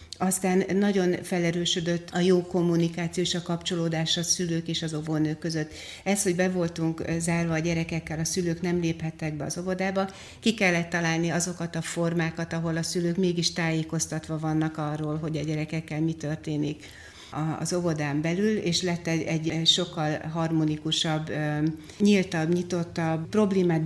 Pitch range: 160-180 Hz